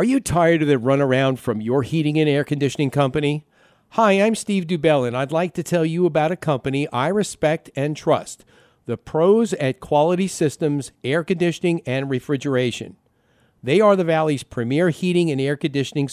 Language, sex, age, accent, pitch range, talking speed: English, male, 50-69, American, 135-175 Hz, 180 wpm